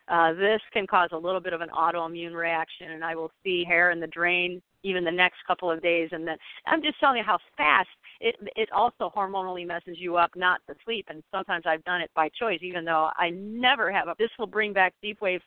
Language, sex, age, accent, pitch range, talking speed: English, female, 50-69, American, 175-220 Hz, 240 wpm